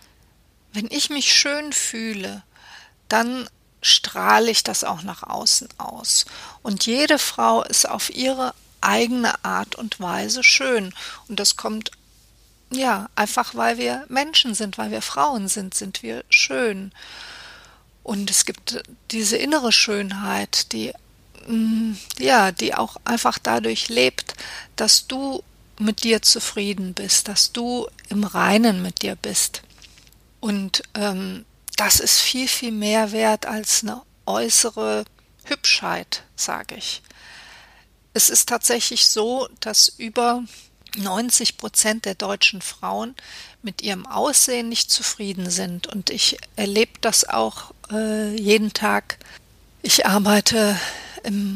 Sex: female